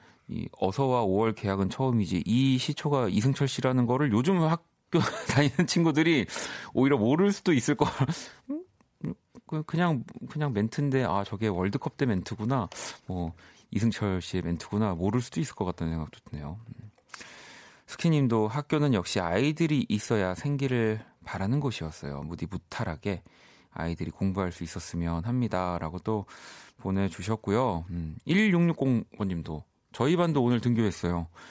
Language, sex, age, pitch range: Korean, male, 30-49, 90-130 Hz